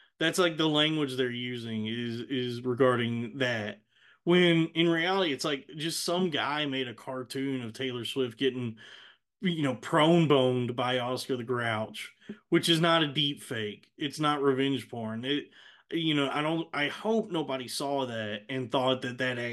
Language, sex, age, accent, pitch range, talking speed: English, male, 30-49, American, 125-145 Hz, 175 wpm